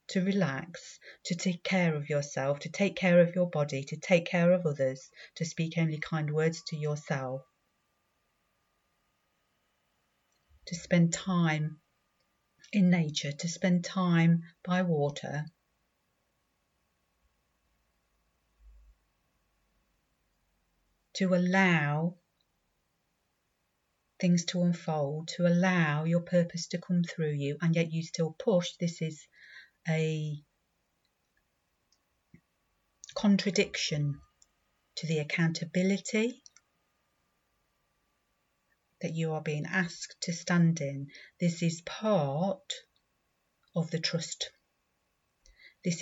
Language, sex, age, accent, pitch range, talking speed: English, female, 40-59, British, 150-180 Hz, 100 wpm